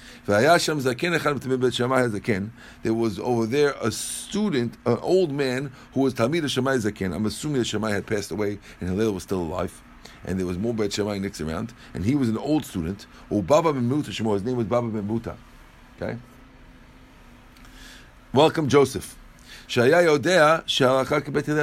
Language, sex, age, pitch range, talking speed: English, male, 50-69, 110-160 Hz, 135 wpm